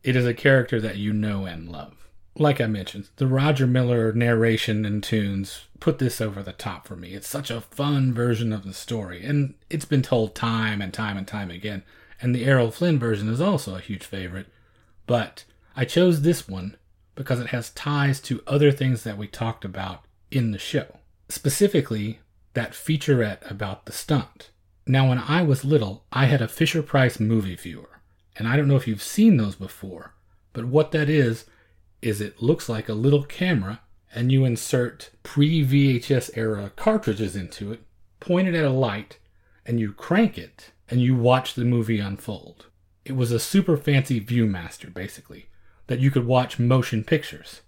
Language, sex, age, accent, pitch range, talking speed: English, male, 30-49, American, 100-135 Hz, 180 wpm